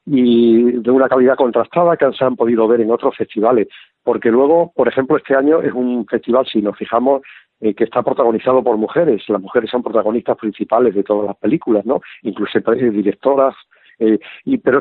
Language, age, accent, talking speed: Spanish, 50-69, Spanish, 185 wpm